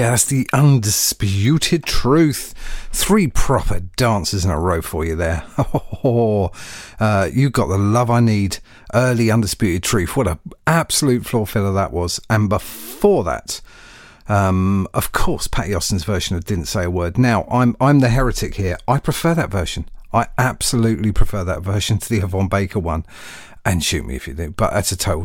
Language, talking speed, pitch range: English, 180 wpm, 95-125 Hz